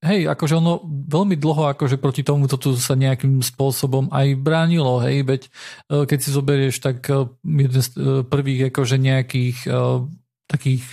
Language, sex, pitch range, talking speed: Slovak, male, 130-145 Hz, 145 wpm